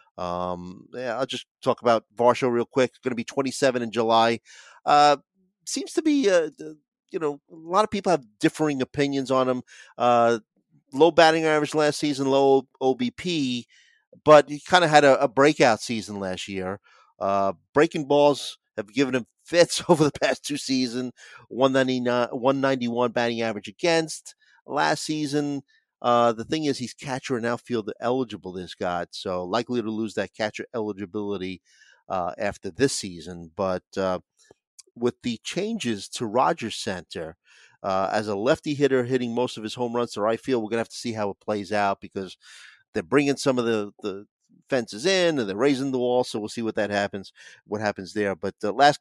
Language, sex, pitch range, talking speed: English, male, 110-145 Hz, 180 wpm